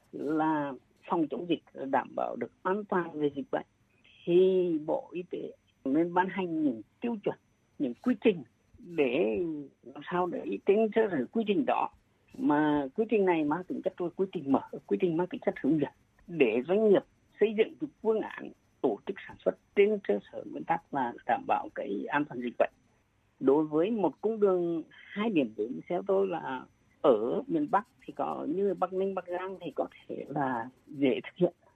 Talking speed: 195 wpm